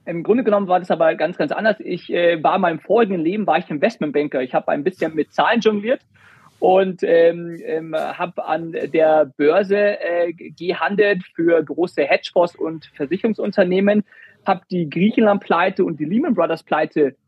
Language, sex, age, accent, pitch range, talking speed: German, male, 40-59, German, 160-200 Hz, 165 wpm